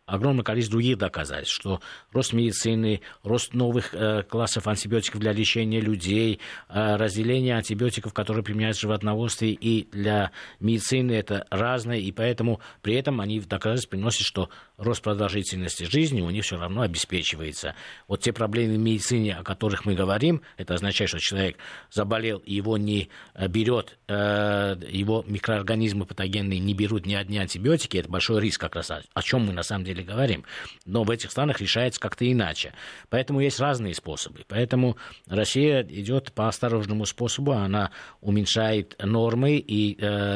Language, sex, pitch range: Russian, male, 100-120 Hz